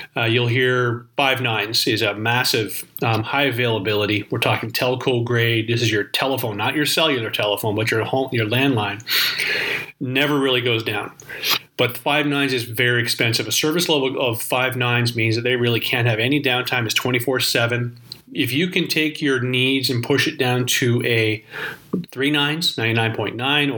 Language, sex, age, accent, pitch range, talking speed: English, male, 40-59, American, 120-140 Hz, 170 wpm